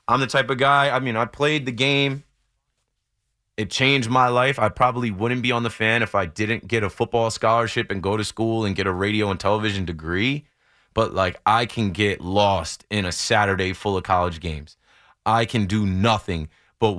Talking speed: 205 wpm